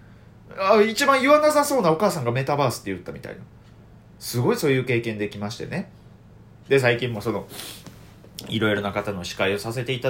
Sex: male